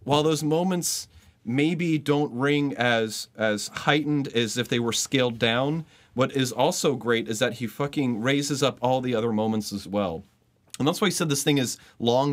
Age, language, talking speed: 30-49, English, 195 wpm